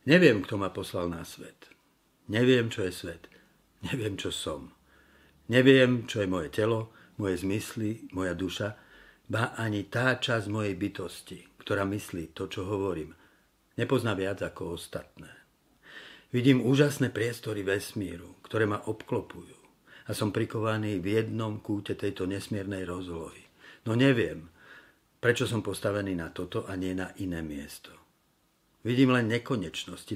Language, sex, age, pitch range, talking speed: Slovak, male, 50-69, 90-115 Hz, 135 wpm